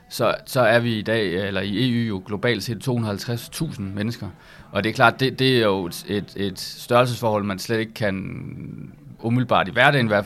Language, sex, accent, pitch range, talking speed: Danish, male, native, 100-125 Hz, 200 wpm